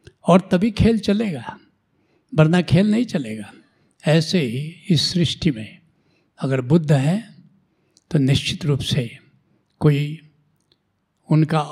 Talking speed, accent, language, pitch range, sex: 115 wpm, native, Hindi, 145-180 Hz, male